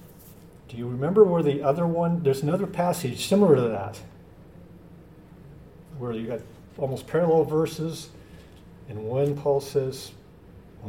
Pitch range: 105-145 Hz